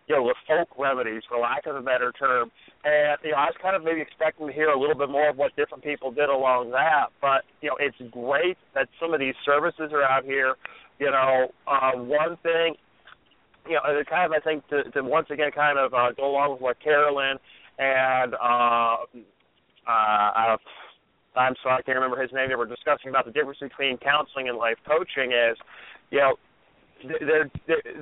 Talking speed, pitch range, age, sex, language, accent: 205 wpm, 130-150 Hz, 40-59, male, English, American